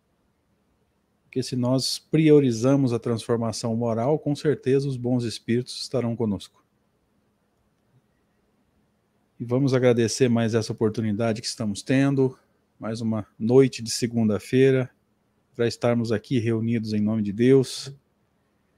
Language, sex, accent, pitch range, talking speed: Portuguese, male, Brazilian, 110-130 Hz, 115 wpm